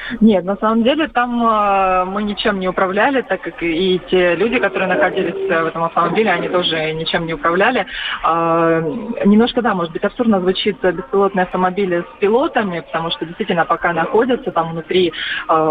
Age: 20-39